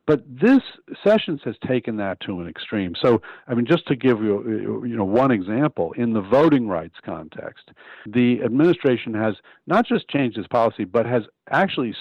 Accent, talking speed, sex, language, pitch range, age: American, 180 wpm, male, English, 105-135 Hz, 50-69